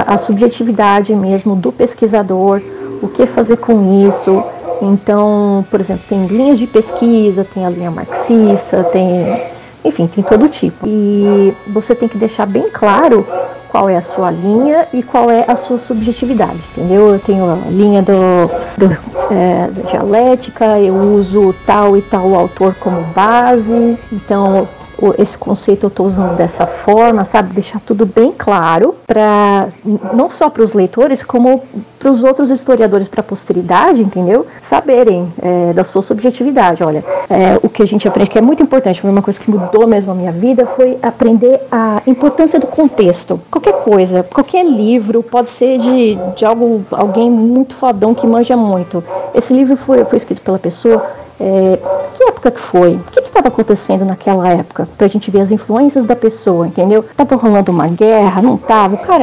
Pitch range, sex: 190-245 Hz, female